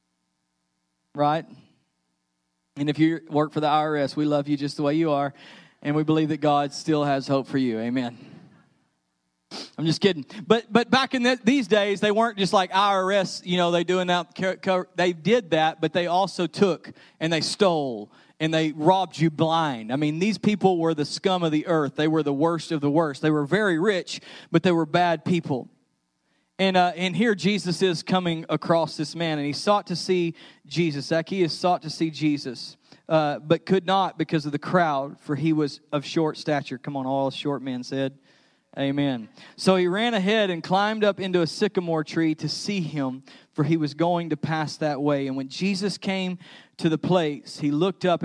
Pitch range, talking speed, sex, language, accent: 145-180 Hz, 200 wpm, male, English, American